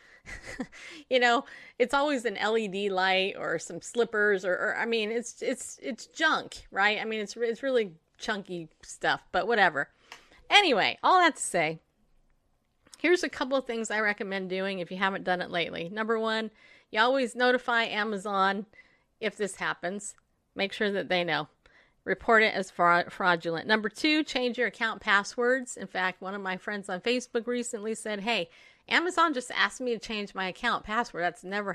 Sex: female